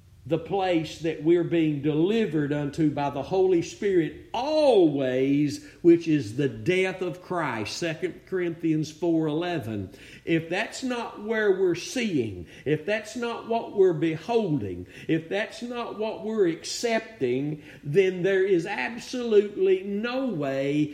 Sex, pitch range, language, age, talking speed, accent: male, 145-195 Hz, English, 50-69, 130 wpm, American